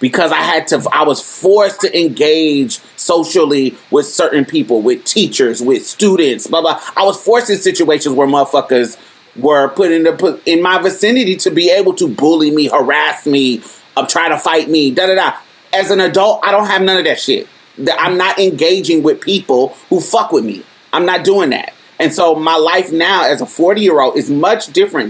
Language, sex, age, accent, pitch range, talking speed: English, male, 30-49, American, 125-180 Hz, 200 wpm